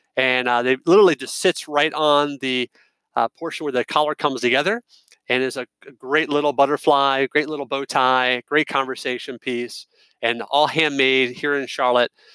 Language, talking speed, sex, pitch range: English, 170 wpm, male, 130-160 Hz